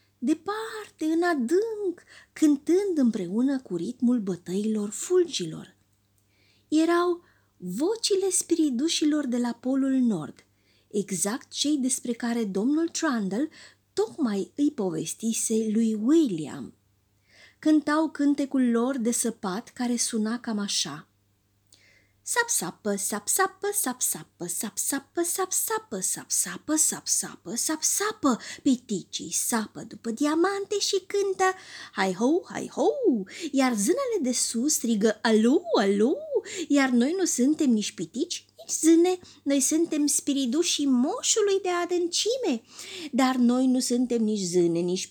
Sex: female